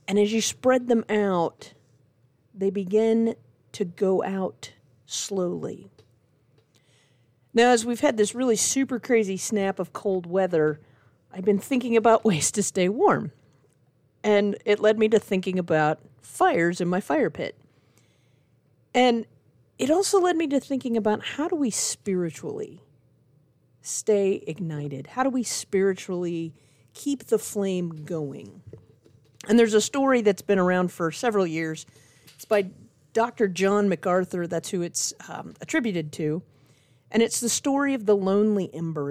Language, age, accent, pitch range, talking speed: English, 40-59, American, 145-225 Hz, 145 wpm